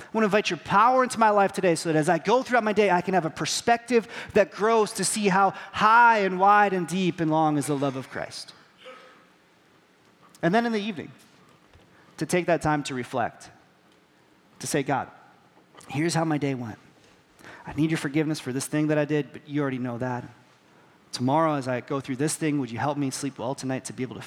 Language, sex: English, male